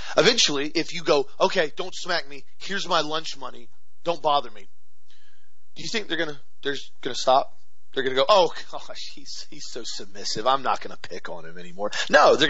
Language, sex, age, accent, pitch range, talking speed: English, male, 30-49, American, 140-200 Hz, 210 wpm